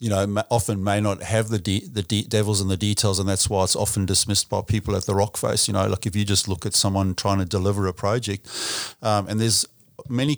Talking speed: 255 wpm